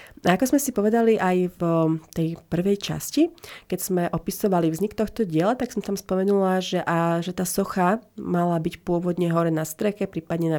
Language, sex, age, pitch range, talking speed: Slovak, female, 30-49, 170-200 Hz, 185 wpm